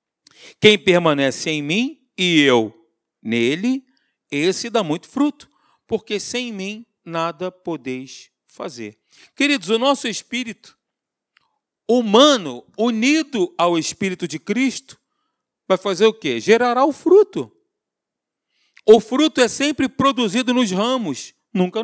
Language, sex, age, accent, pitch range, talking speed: Portuguese, male, 40-59, Brazilian, 180-245 Hz, 115 wpm